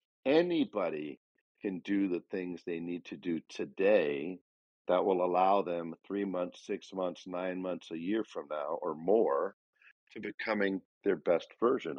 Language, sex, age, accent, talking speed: English, male, 50-69, American, 155 wpm